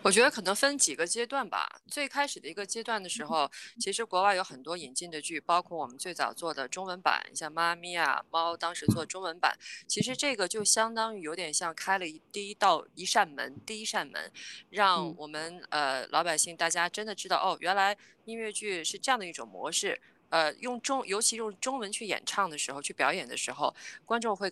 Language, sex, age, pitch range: Chinese, female, 20-39, 170-240 Hz